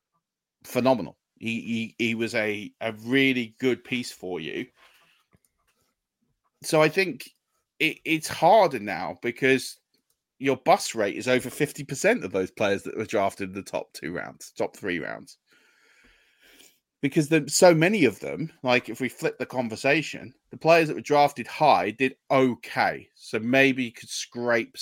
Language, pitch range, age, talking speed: English, 110-145 Hz, 30-49, 155 wpm